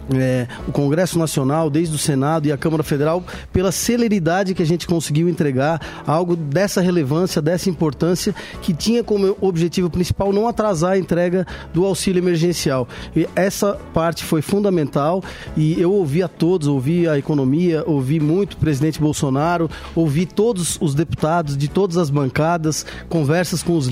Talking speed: 155 wpm